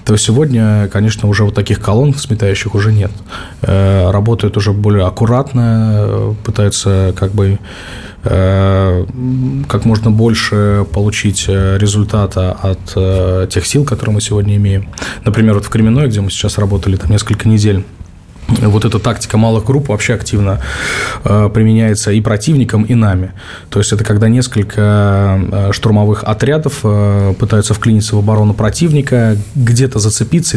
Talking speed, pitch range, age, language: 135 wpm, 100-115 Hz, 20-39, Russian